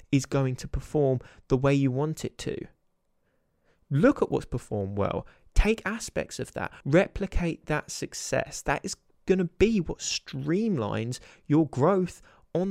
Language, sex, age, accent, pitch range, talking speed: English, male, 20-39, British, 115-150 Hz, 150 wpm